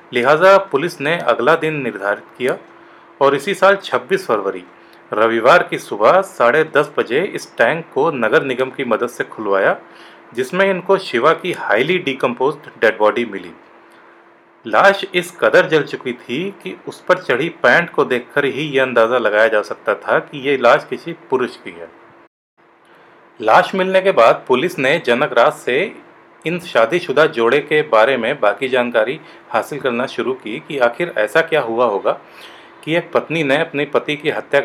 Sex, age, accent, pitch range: male, 40-59, Indian, 130-180 Hz